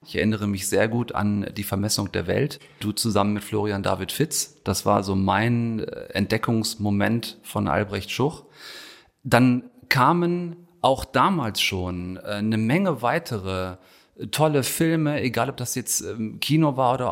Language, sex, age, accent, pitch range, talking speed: German, male, 40-59, German, 110-140 Hz, 145 wpm